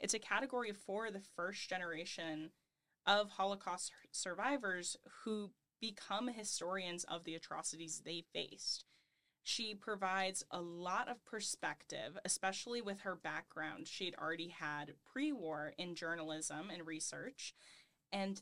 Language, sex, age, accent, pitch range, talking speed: English, female, 10-29, American, 165-200 Hz, 120 wpm